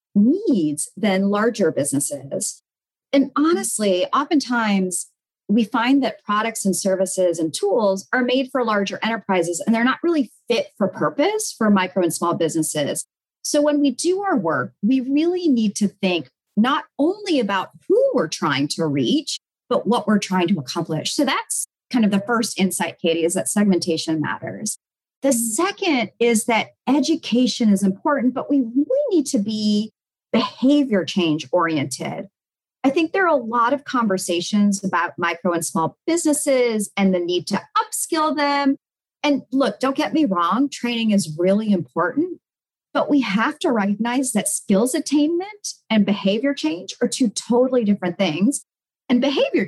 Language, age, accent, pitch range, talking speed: English, 40-59, American, 190-280 Hz, 160 wpm